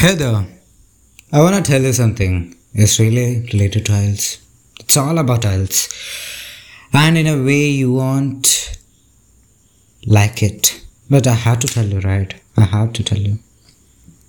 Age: 20-39